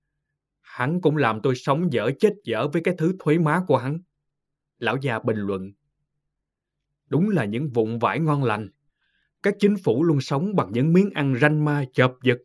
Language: Vietnamese